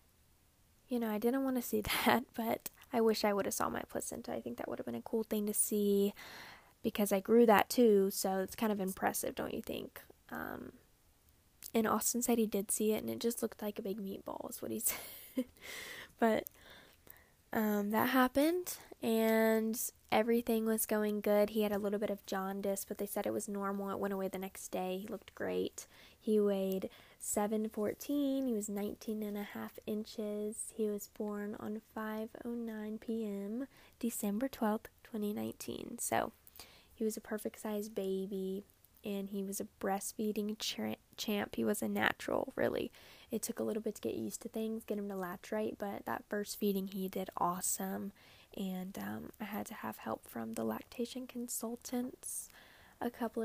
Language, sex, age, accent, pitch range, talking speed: English, female, 10-29, American, 195-225 Hz, 185 wpm